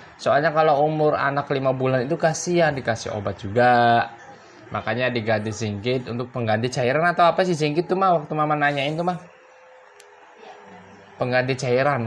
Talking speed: 150 wpm